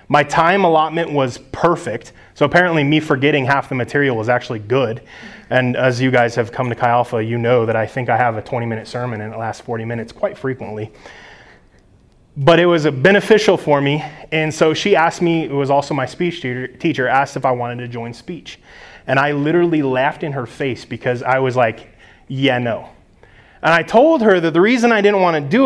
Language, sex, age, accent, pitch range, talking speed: English, male, 20-39, American, 130-165 Hz, 210 wpm